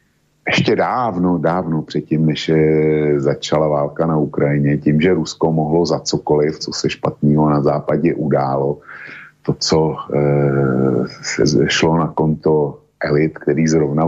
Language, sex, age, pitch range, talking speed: Slovak, male, 50-69, 75-85 Hz, 130 wpm